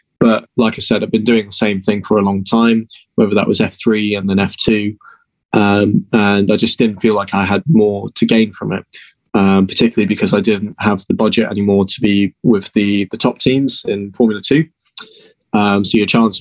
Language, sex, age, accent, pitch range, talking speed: English, male, 20-39, British, 100-110 Hz, 210 wpm